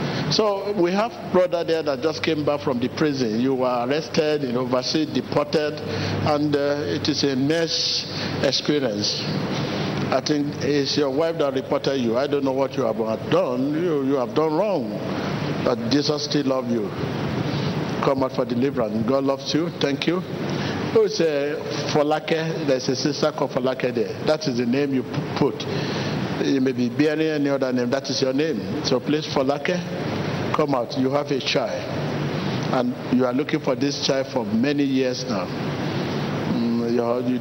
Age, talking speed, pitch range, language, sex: 60-79, 180 wpm, 130-155 Hz, English, male